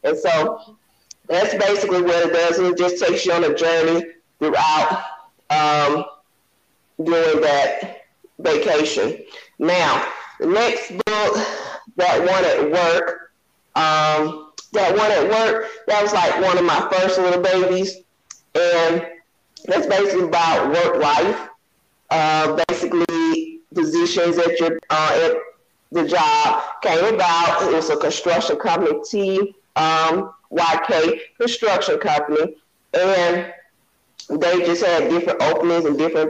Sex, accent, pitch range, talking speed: female, American, 165-215 Hz, 125 wpm